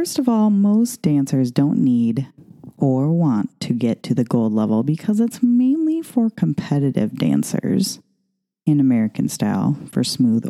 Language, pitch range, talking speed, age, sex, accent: English, 130-215 Hz, 150 wpm, 30-49, female, American